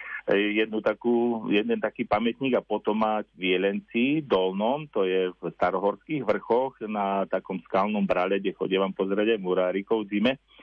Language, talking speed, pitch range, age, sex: Slovak, 135 wpm, 95-115 Hz, 40-59, male